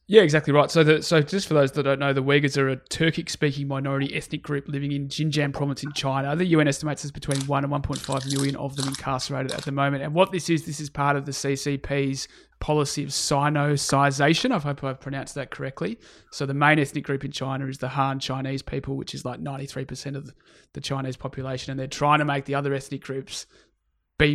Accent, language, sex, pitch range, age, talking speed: Australian, English, male, 140-155 Hz, 20-39, 225 wpm